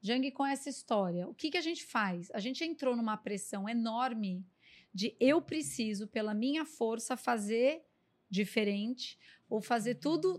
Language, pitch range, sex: Portuguese, 215-275 Hz, female